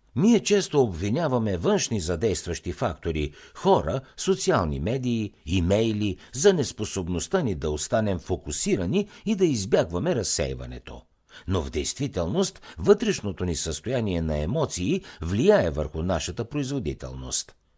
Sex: male